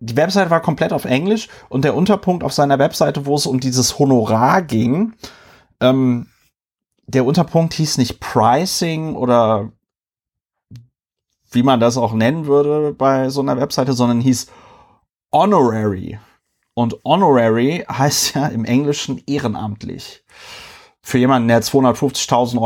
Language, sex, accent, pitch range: German, male, German, 120-150 Hz